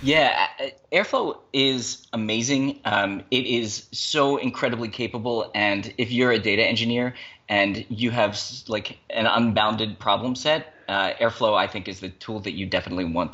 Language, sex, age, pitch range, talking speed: English, male, 30-49, 105-130 Hz, 155 wpm